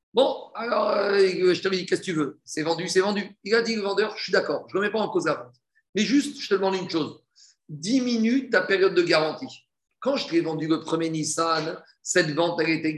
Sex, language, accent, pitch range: male, French, French, 165-205 Hz